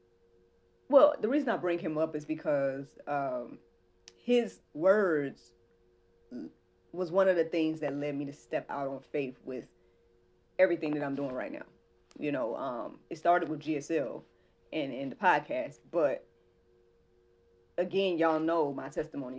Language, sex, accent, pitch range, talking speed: English, female, American, 125-165 Hz, 150 wpm